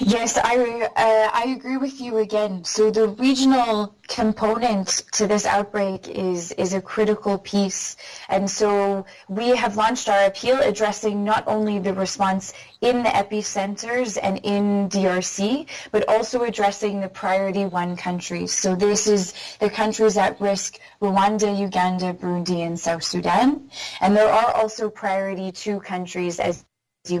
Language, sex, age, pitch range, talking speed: English, female, 20-39, 185-220 Hz, 150 wpm